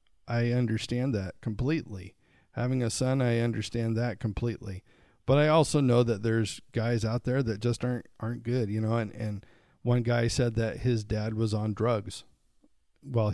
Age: 40-59